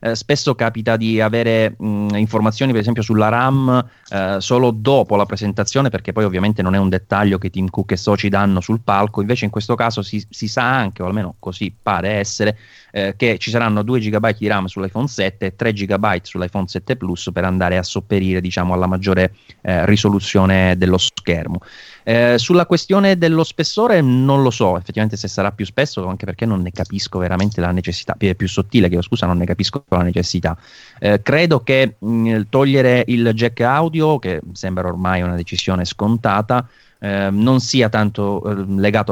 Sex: male